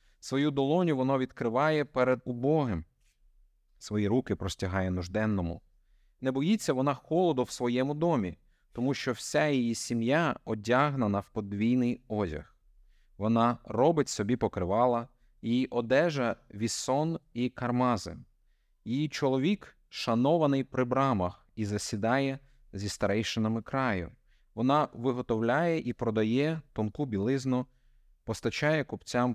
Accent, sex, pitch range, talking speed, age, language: native, male, 105-135 Hz, 110 wpm, 30-49, Ukrainian